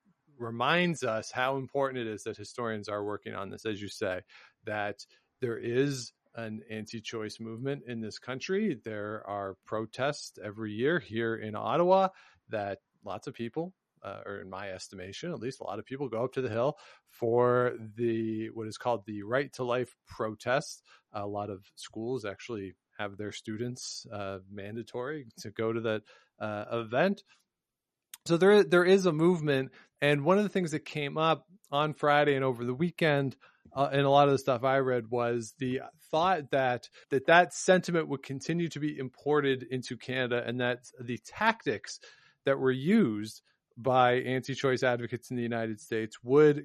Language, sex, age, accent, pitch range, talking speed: English, male, 40-59, American, 110-145 Hz, 175 wpm